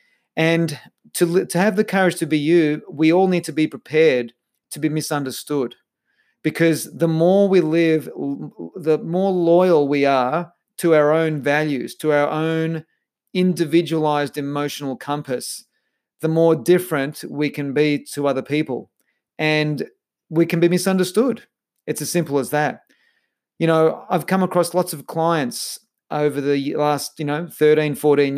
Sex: male